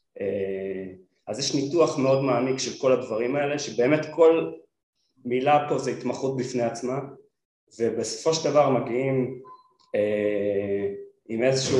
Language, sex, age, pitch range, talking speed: Hebrew, male, 30-49, 125-160 Hz, 125 wpm